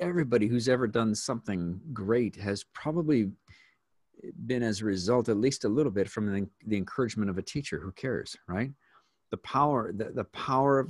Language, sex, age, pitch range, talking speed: English, male, 50-69, 95-115 Hz, 170 wpm